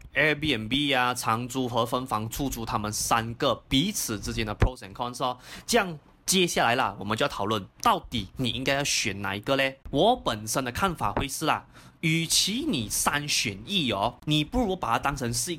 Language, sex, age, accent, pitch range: Chinese, male, 20-39, native, 115-160 Hz